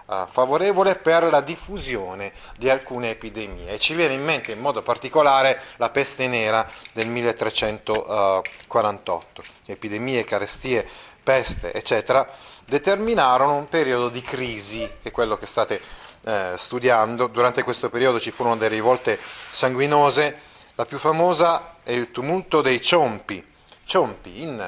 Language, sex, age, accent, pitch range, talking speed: Italian, male, 30-49, native, 110-140 Hz, 130 wpm